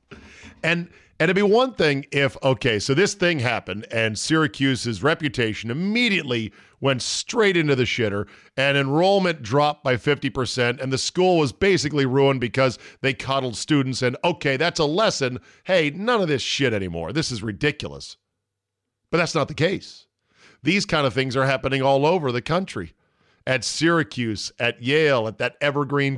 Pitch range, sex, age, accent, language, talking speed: 115-155 Hz, male, 50-69, American, English, 165 wpm